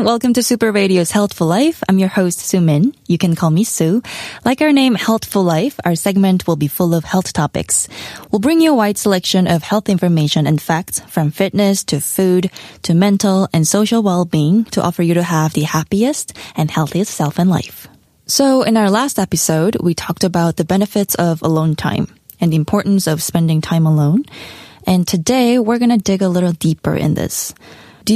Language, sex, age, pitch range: Korean, female, 20-39, 160-205 Hz